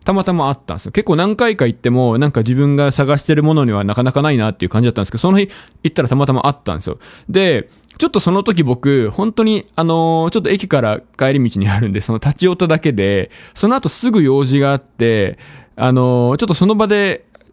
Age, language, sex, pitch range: 20-39, Japanese, male, 115-175 Hz